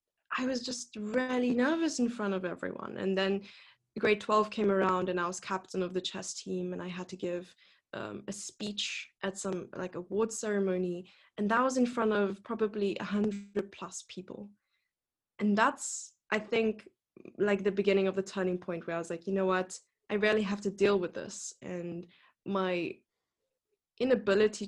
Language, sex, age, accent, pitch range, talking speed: English, female, 10-29, German, 185-210 Hz, 180 wpm